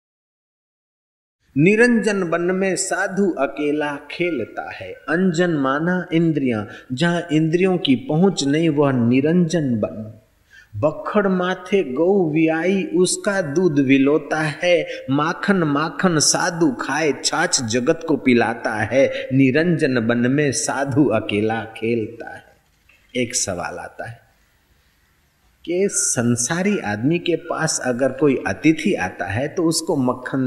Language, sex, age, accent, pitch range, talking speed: Hindi, male, 30-49, native, 125-180 Hz, 115 wpm